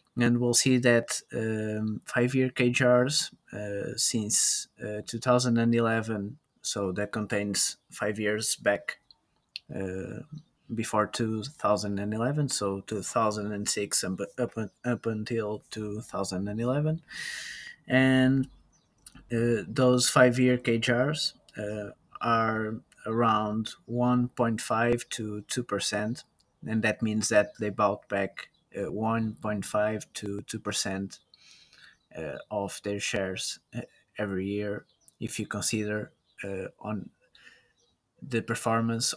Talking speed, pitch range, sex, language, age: 90 wpm, 105-125 Hz, male, English, 20-39